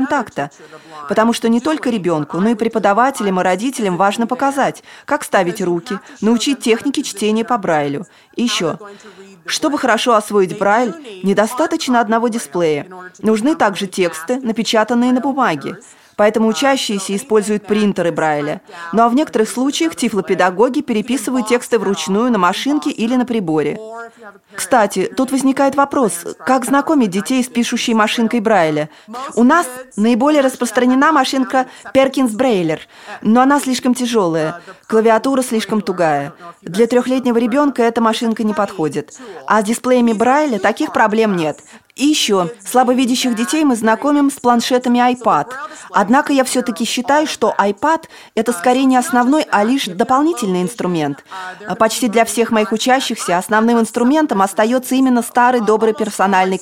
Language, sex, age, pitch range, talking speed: Russian, female, 20-39, 200-255 Hz, 140 wpm